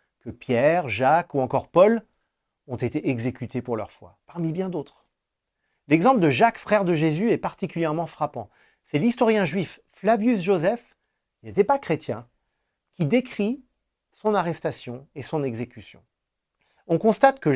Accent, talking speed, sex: French, 145 wpm, male